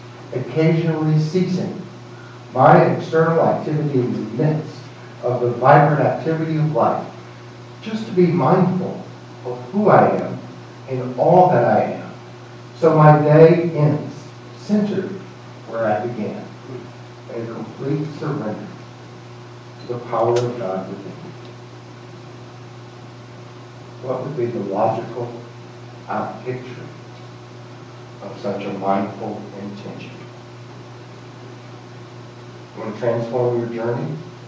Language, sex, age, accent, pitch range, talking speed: English, male, 60-79, American, 115-150 Hz, 110 wpm